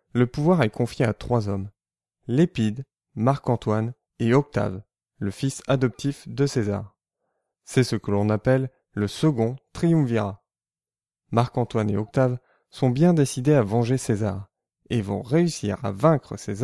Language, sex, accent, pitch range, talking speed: French, male, French, 105-140 Hz, 140 wpm